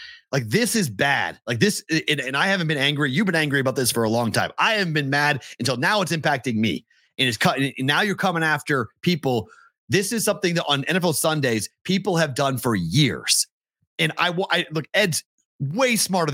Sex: male